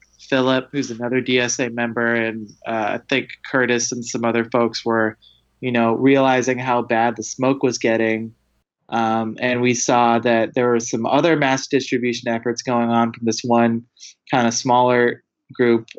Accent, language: American, English